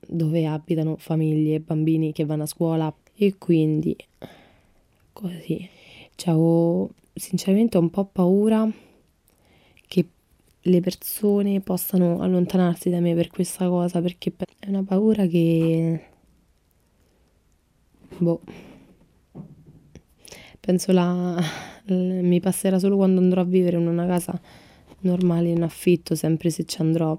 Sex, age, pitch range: female, 20-39, 160-185 Hz